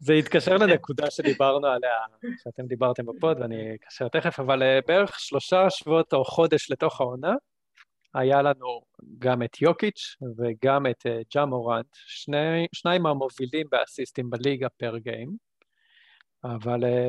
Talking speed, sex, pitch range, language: 125 wpm, male, 125-170 Hz, Hebrew